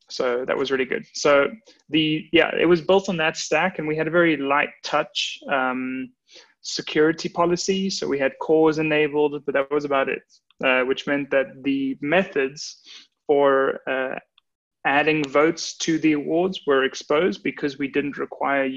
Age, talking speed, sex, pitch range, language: 20-39, 170 wpm, male, 135-165 Hz, English